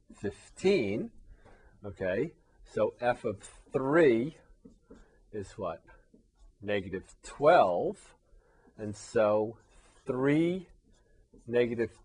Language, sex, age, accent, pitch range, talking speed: English, male, 40-59, American, 100-125 Hz, 70 wpm